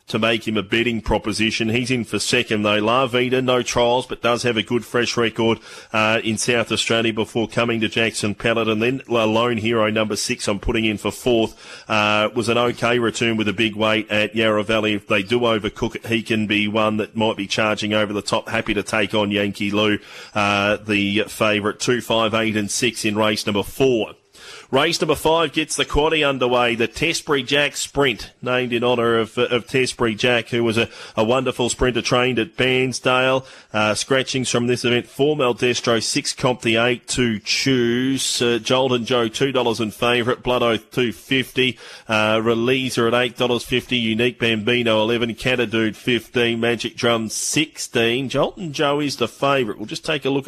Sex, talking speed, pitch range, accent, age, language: male, 190 wpm, 110-125 Hz, Australian, 30-49, English